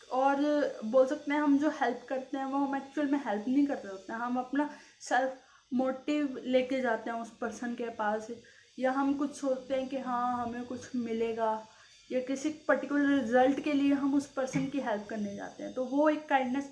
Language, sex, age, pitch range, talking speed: Hindi, female, 20-39, 235-280 Hz, 210 wpm